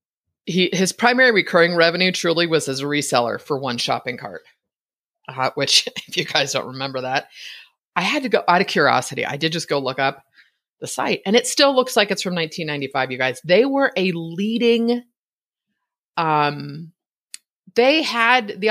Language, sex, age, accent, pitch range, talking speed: English, female, 30-49, American, 145-235 Hz, 180 wpm